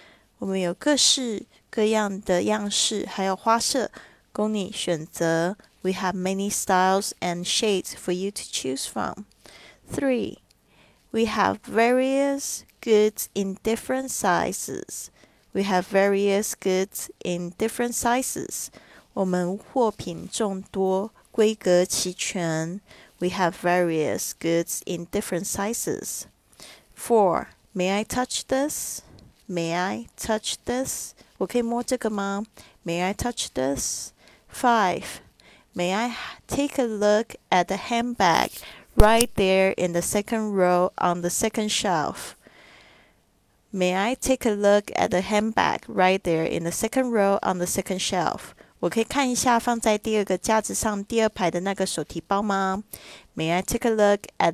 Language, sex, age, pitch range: Chinese, female, 20-39, 180-220 Hz